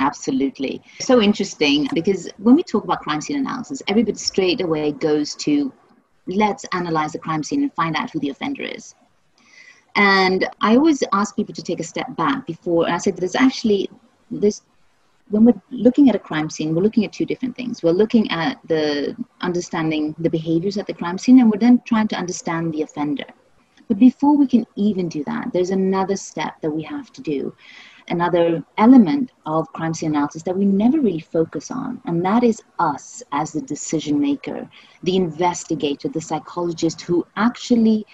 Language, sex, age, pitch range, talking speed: English, female, 30-49, 165-245 Hz, 185 wpm